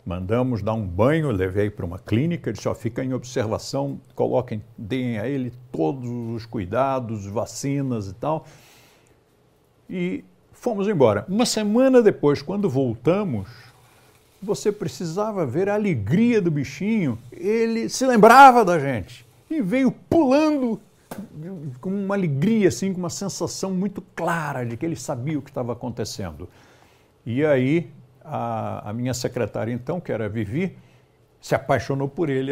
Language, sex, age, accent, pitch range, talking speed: Portuguese, male, 60-79, Brazilian, 120-190 Hz, 145 wpm